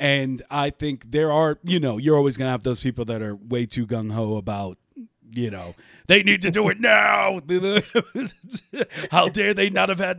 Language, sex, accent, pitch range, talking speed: English, male, American, 120-155 Hz, 200 wpm